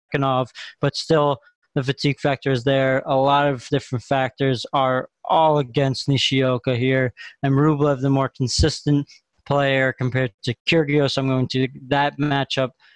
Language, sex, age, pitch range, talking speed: English, male, 20-39, 135-150 Hz, 150 wpm